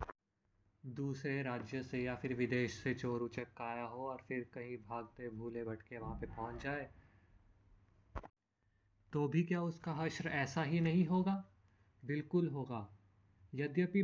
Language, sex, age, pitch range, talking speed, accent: Hindi, male, 20-39, 115-150 Hz, 135 wpm, native